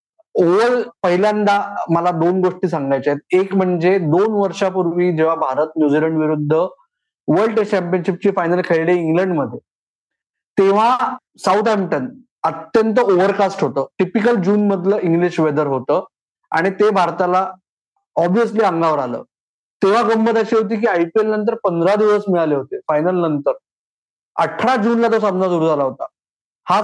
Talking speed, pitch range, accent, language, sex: 140 wpm, 165-210 Hz, native, Marathi, male